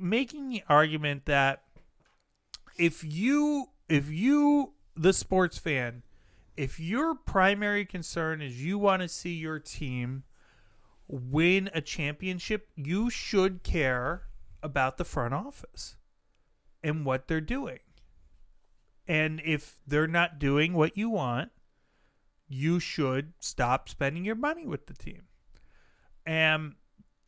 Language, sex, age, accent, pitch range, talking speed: English, male, 30-49, American, 135-205 Hz, 120 wpm